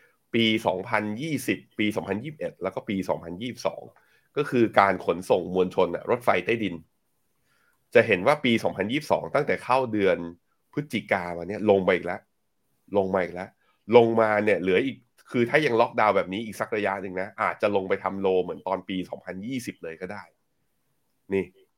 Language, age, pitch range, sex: Thai, 20-39, 90-115 Hz, male